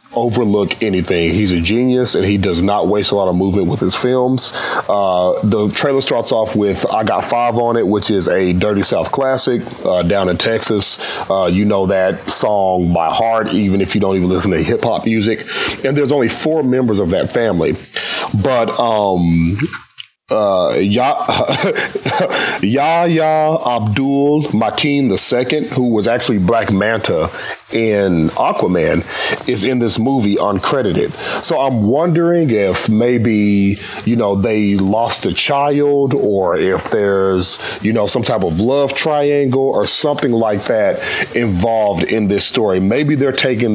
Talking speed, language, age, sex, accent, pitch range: 155 wpm, English, 30-49, male, American, 100-125 Hz